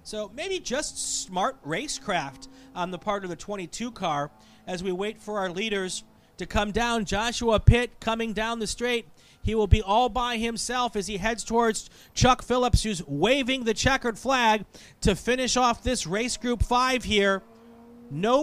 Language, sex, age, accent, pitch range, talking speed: English, male, 40-59, American, 185-240 Hz, 175 wpm